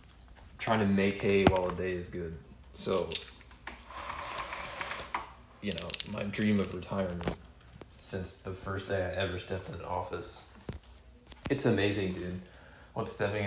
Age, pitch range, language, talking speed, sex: 20-39, 90-105 Hz, English, 140 wpm, male